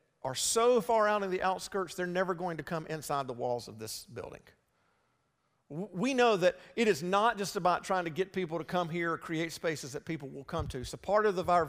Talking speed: 230 wpm